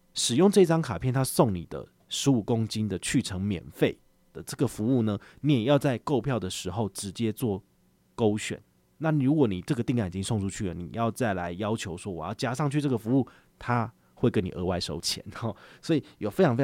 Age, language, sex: 30-49, Chinese, male